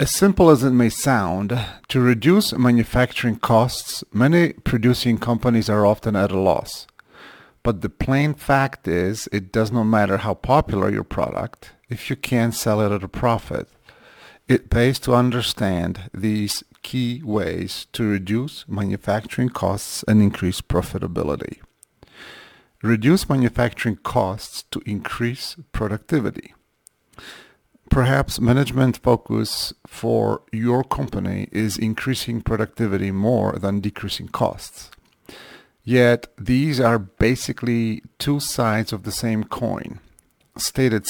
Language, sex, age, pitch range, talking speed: English, male, 40-59, 105-125 Hz, 120 wpm